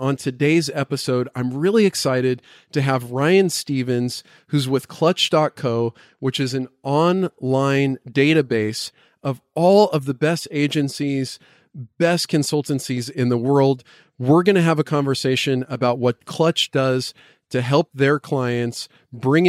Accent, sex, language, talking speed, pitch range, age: American, male, English, 135 wpm, 125-150 Hz, 40-59